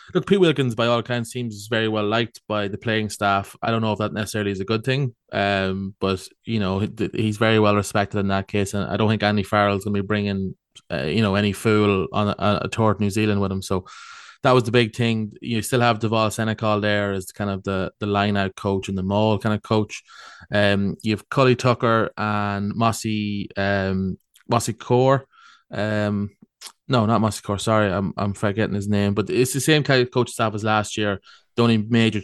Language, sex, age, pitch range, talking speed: English, male, 20-39, 100-115 Hz, 220 wpm